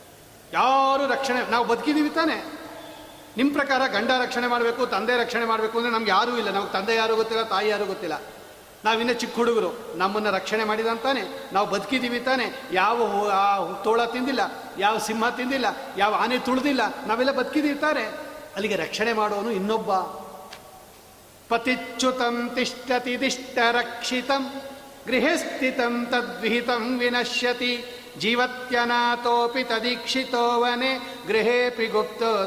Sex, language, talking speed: male, Kannada, 110 wpm